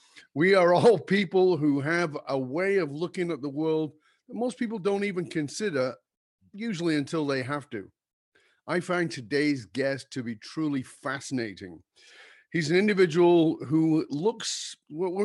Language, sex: English, male